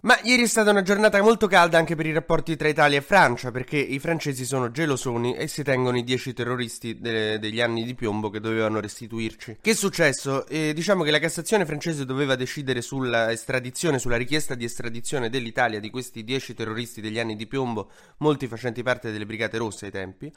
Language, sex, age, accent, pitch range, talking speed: Italian, male, 20-39, native, 115-155 Hz, 205 wpm